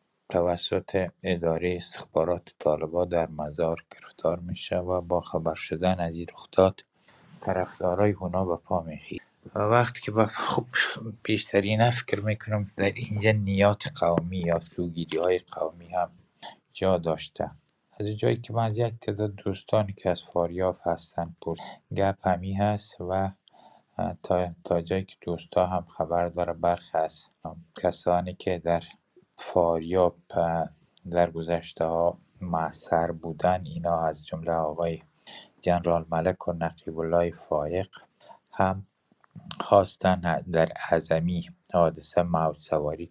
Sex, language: male, Persian